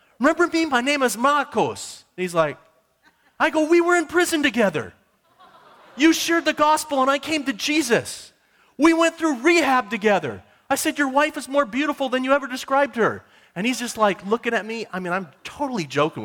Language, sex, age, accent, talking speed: English, male, 30-49, American, 195 wpm